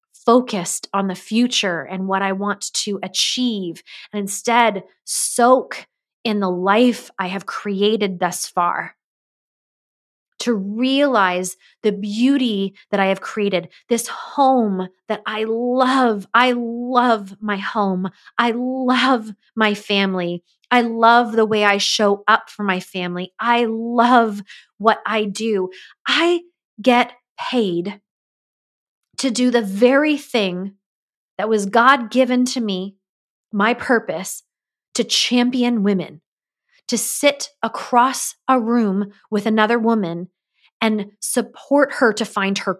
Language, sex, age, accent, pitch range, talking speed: English, female, 20-39, American, 200-250 Hz, 125 wpm